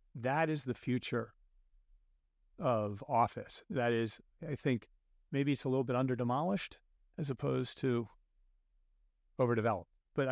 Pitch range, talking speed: 100-135 Hz, 130 wpm